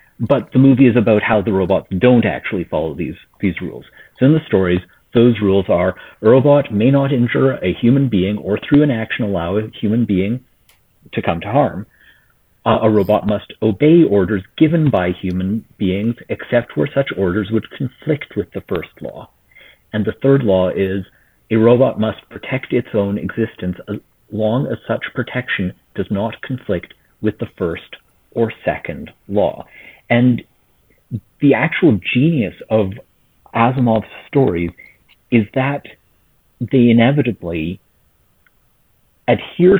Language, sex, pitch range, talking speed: English, male, 100-125 Hz, 150 wpm